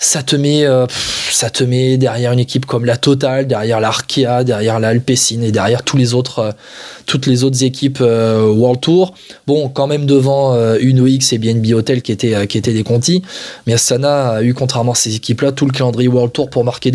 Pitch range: 125-155 Hz